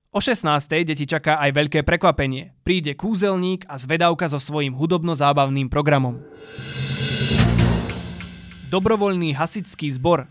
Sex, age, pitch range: male, 20-39, 140-175 Hz